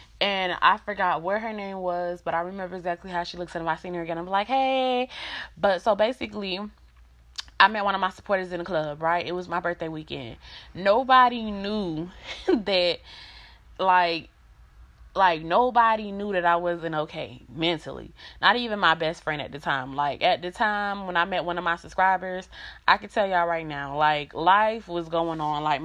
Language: English